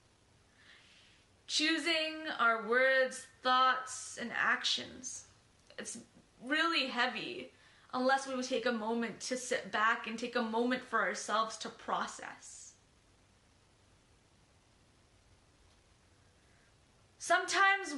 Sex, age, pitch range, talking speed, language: female, 20-39, 170-270 Hz, 90 wpm, English